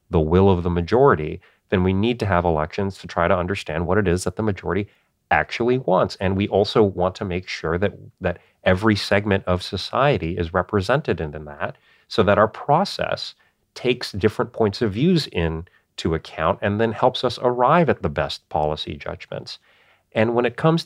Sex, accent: male, American